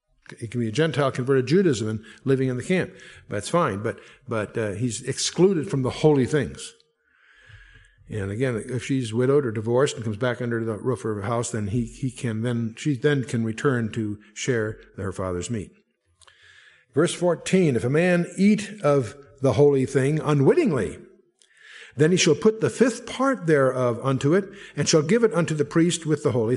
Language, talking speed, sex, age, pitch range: English, 190 wpm, male, 60-79, 120-165 Hz